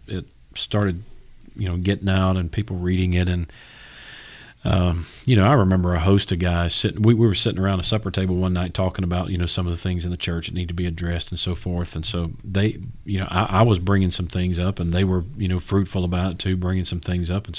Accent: American